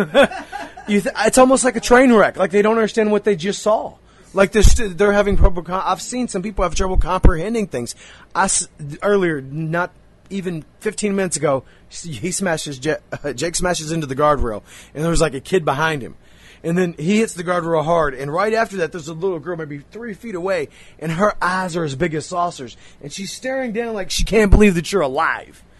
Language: English